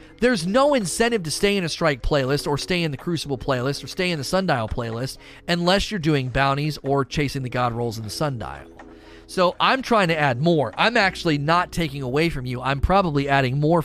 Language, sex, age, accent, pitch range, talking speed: English, male, 30-49, American, 120-165 Hz, 215 wpm